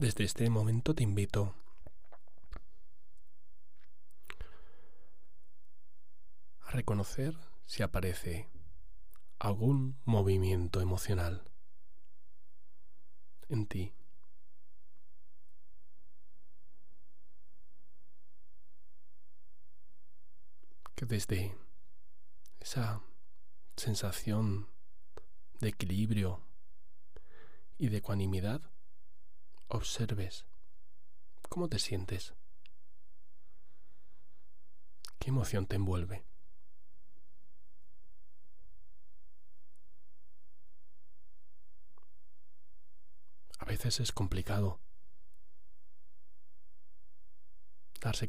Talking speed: 45 wpm